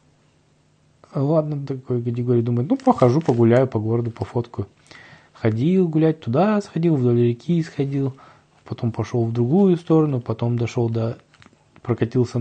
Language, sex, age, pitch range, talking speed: Russian, male, 20-39, 115-140 Hz, 125 wpm